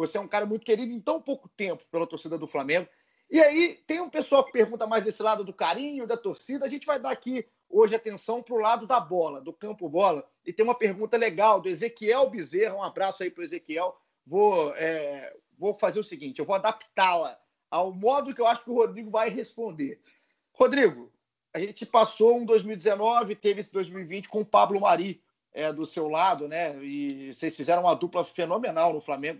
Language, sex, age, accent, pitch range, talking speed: Portuguese, male, 40-59, Brazilian, 170-235 Hz, 210 wpm